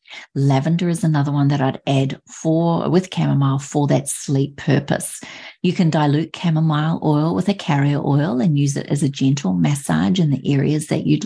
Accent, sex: Australian, female